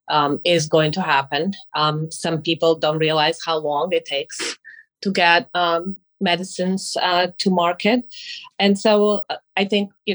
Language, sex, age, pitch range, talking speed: English, female, 30-49, 160-190 Hz, 155 wpm